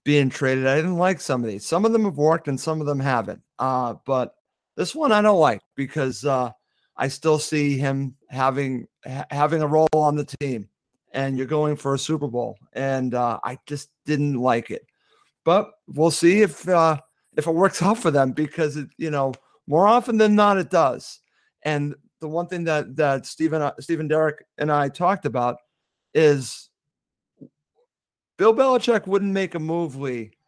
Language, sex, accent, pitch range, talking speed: English, male, American, 135-170 Hz, 185 wpm